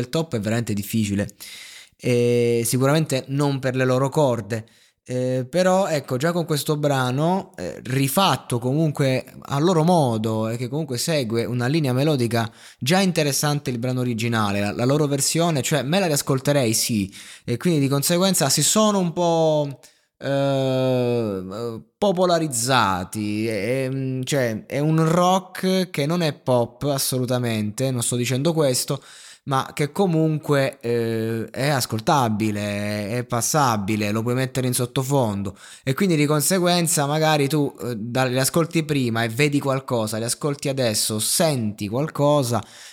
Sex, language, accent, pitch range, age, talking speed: male, Italian, native, 120-150 Hz, 20-39, 140 wpm